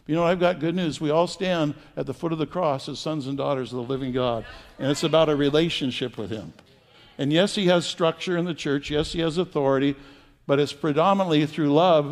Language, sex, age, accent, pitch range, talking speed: English, male, 60-79, American, 140-170 Hz, 235 wpm